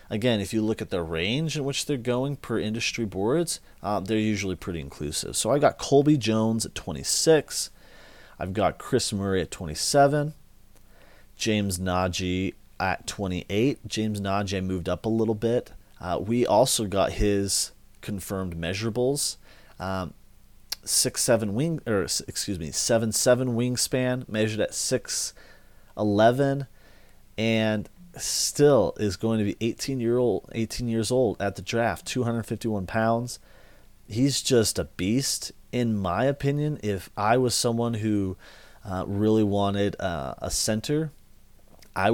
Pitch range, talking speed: 95-125 Hz, 145 wpm